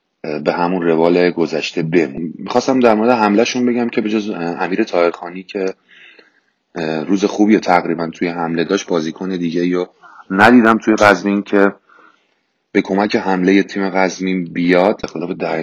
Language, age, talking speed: Persian, 30-49, 140 wpm